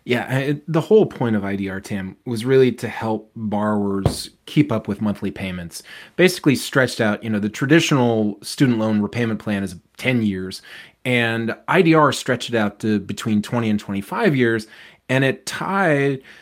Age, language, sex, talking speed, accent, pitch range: 20-39, English, male, 165 wpm, American, 105-140 Hz